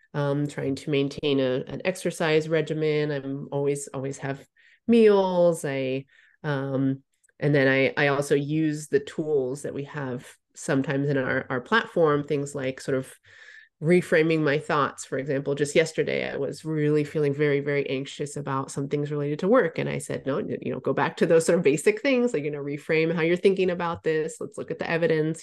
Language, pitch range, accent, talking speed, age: English, 140-165 Hz, American, 195 wpm, 30-49